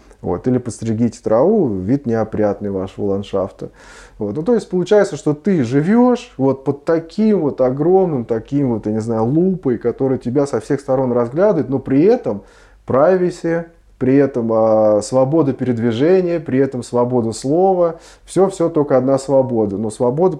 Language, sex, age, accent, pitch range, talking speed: Russian, male, 20-39, native, 105-145 Hz, 155 wpm